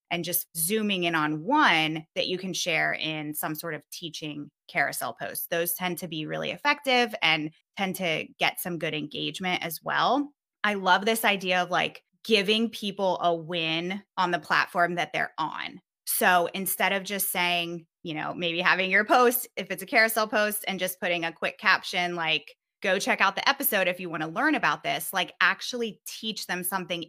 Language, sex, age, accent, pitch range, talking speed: English, female, 20-39, American, 170-220 Hz, 195 wpm